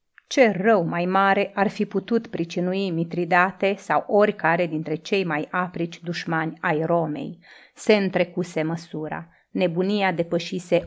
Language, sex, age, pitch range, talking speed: Romanian, female, 30-49, 165-200 Hz, 125 wpm